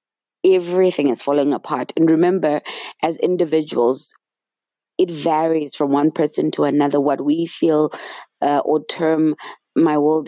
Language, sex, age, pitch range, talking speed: English, female, 20-39, 150-185 Hz, 135 wpm